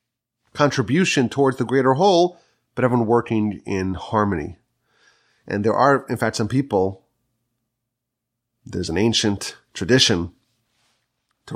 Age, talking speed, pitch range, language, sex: 30-49, 115 wpm, 110-135 Hz, English, male